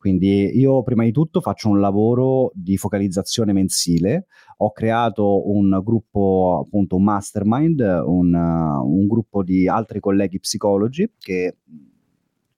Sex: male